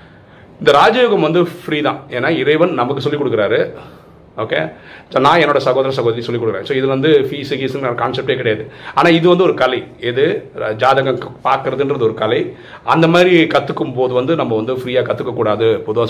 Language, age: Tamil, 40-59